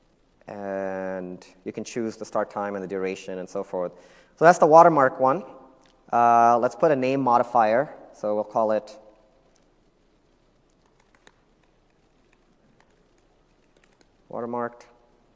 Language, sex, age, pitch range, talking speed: English, male, 30-49, 110-145 Hz, 115 wpm